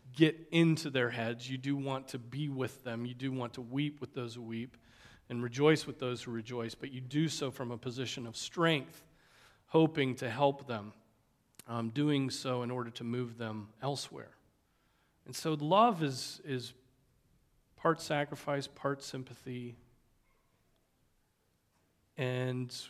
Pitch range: 115-135 Hz